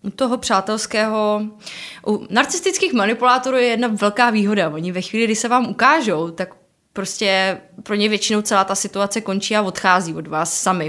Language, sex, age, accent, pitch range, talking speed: Czech, female, 20-39, native, 175-210 Hz, 170 wpm